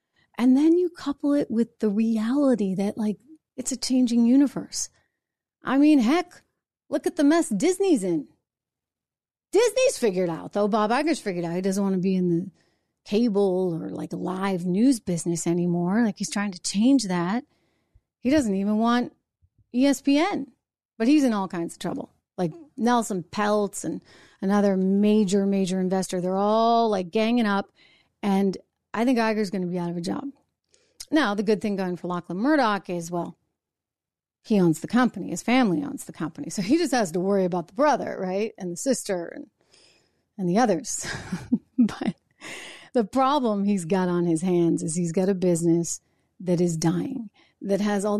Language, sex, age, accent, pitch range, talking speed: English, female, 30-49, American, 185-255 Hz, 175 wpm